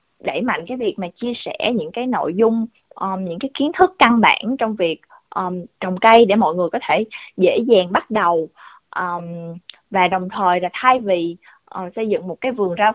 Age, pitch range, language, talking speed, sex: 20-39, 185-260 Hz, Vietnamese, 215 wpm, female